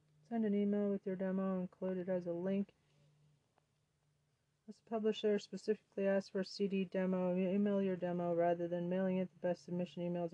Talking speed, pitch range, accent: 175 wpm, 165-195 Hz, American